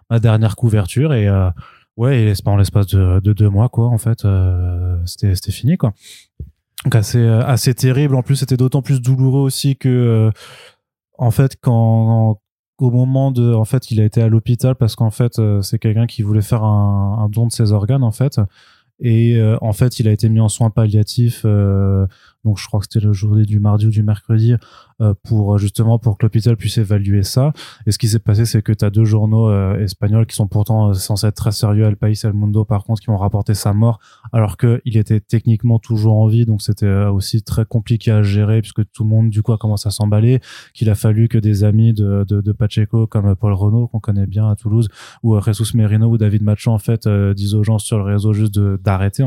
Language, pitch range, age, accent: French, 105-115 Hz, 20-39, French